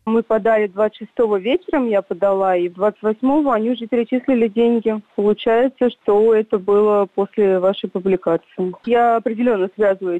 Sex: female